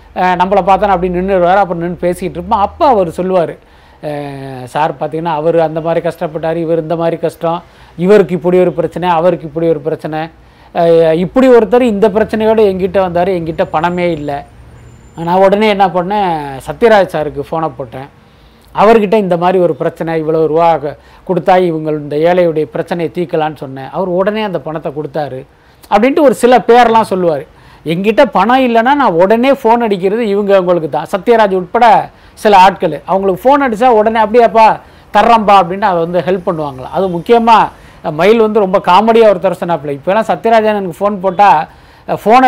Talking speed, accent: 155 wpm, native